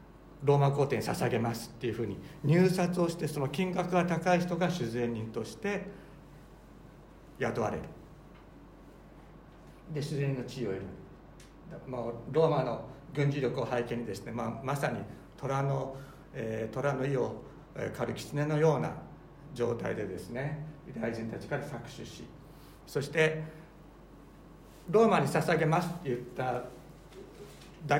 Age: 60-79